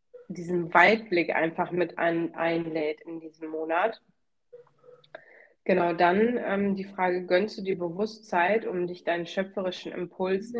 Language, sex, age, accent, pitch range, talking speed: German, female, 20-39, German, 175-200 Hz, 130 wpm